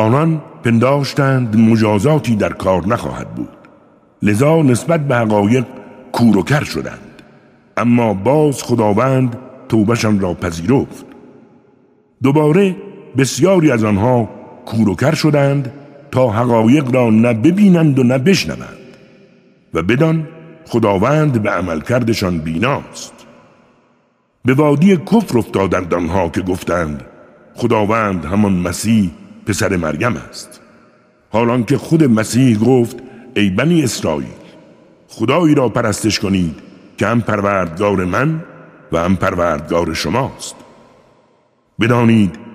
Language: Persian